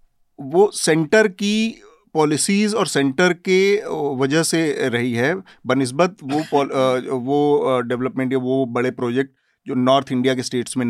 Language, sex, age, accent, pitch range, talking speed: Hindi, male, 40-59, native, 120-150 Hz, 140 wpm